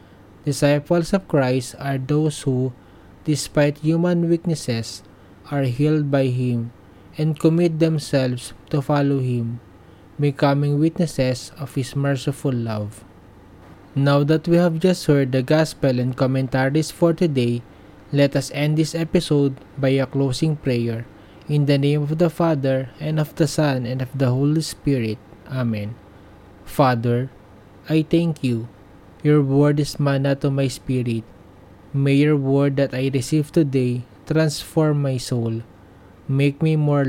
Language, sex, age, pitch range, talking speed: English, male, 20-39, 115-150 Hz, 140 wpm